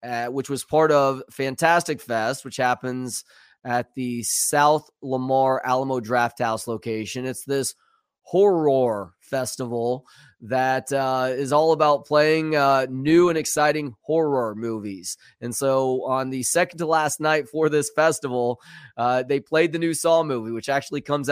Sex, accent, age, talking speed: male, American, 20-39, 150 wpm